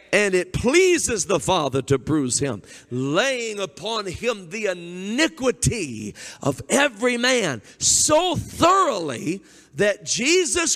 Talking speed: 110 wpm